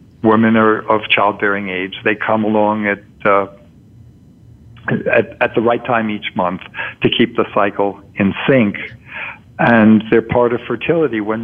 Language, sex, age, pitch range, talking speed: English, male, 60-79, 105-130 Hz, 150 wpm